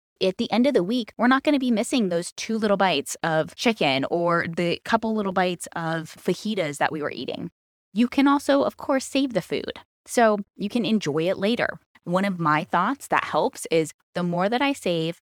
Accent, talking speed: American, 215 wpm